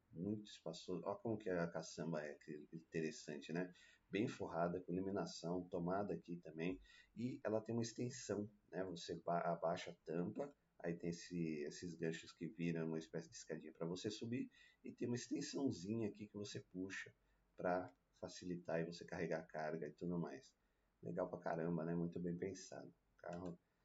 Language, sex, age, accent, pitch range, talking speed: Portuguese, male, 30-49, Brazilian, 85-105 Hz, 170 wpm